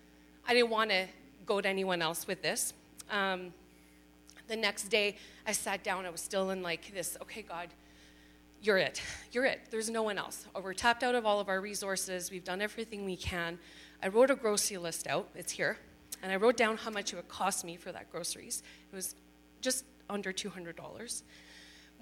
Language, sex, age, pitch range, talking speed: English, female, 30-49, 165-195 Hz, 195 wpm